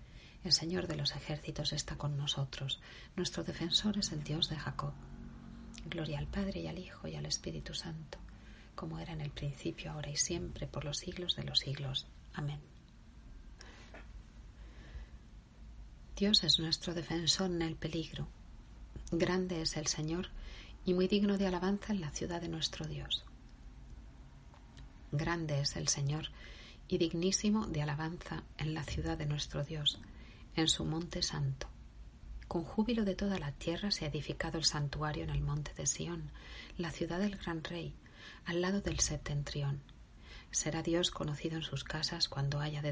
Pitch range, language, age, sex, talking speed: 145-175 Hz, Spanish, 40-59, female, 160 wpm